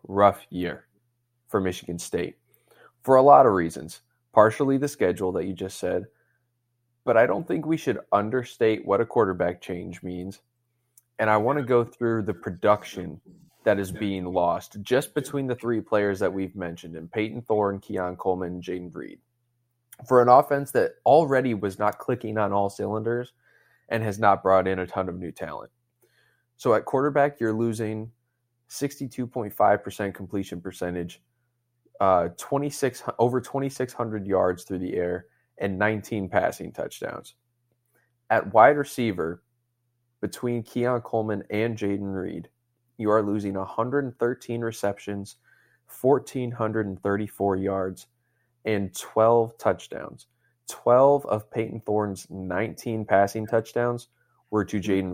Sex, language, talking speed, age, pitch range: male, English, 135 wpm, 20-39, 100-120 Hz